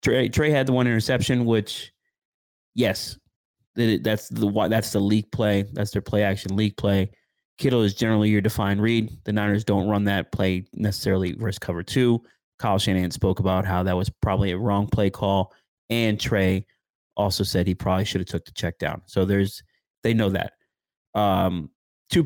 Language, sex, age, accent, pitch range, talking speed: English, male, 30-49, American, 95-115 Hz, 175 wpm